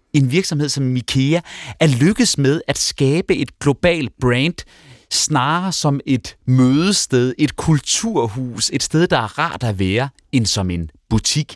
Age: 30-49